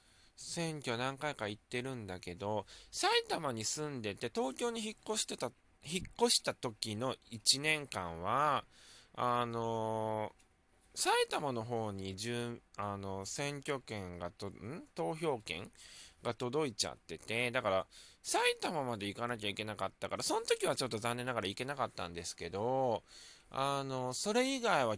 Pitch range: 100-130 Hz